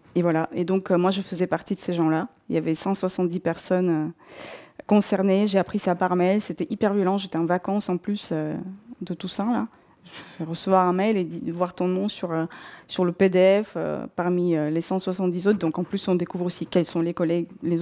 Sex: female